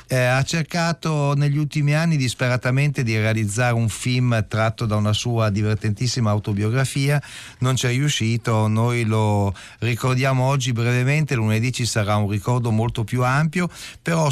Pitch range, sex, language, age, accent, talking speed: 110-140 Hz, male, Italian, 40-59, native, 145 wpm